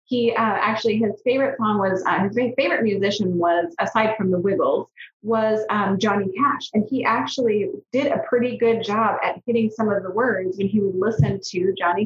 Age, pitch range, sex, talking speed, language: 30-49, 200-240 Hz, female, 200 wpm, English